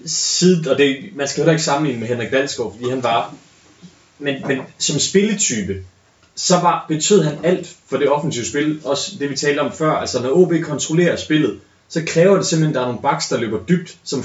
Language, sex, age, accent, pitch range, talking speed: Danish, male, 20-39, native, 125-165 Hz, 210 wpm